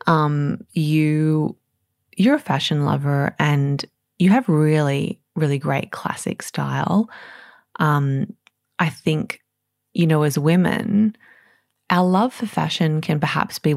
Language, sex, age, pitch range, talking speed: English, female, 20-39, 140-175 Hz, 120 wpm